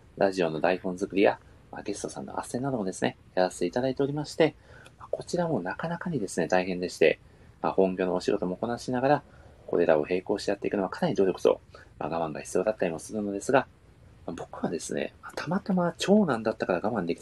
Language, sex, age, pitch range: Japanese, male, 30-49, 100-150 Hz